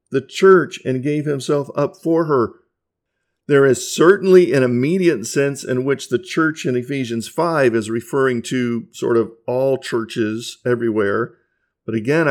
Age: 50-69